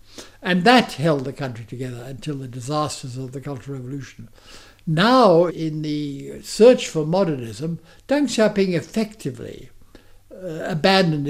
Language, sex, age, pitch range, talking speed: English, male, 60-79, 130-180 Hz, 125 wpm